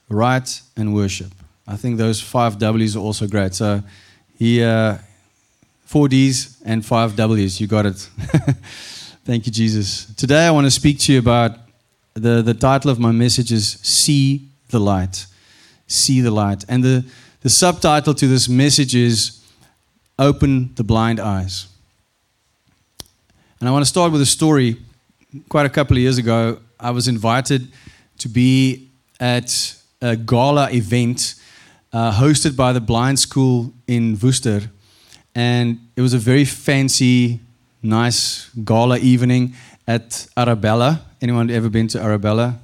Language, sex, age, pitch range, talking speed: English, male, 30-49, 110-130 Hz, 145 wpm